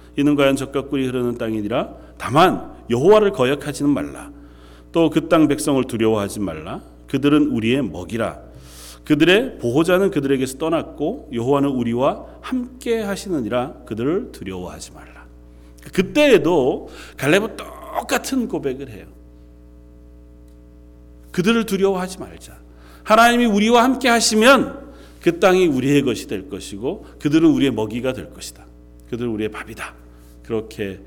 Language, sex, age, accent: Korean, male, 40-59, native